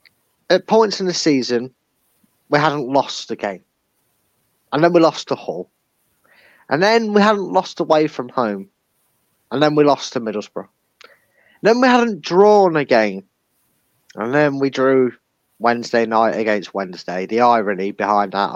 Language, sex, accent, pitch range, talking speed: English, male, British, 115-165 Hz, 155 wpm